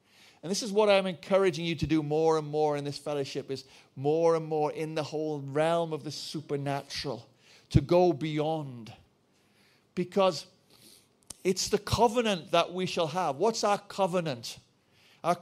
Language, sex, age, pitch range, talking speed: English, male, 40-59, 150-195 Hz, 160 wpm